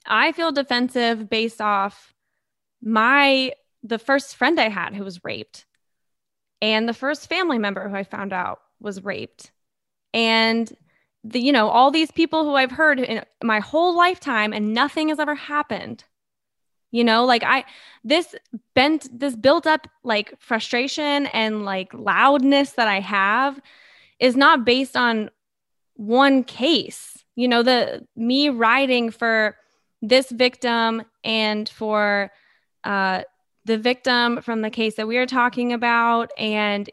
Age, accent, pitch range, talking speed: 20-39, American, 220-275 Hz, 145 wpm